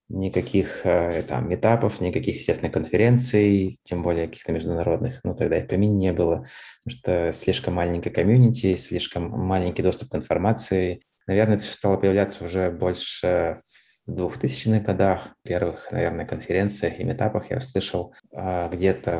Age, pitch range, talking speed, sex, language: 20-39, 90-110 Hz, 140 wpm, male, Russian